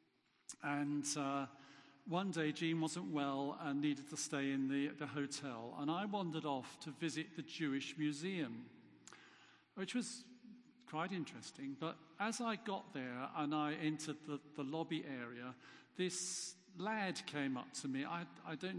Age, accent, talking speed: 50-69, British, 155 wpm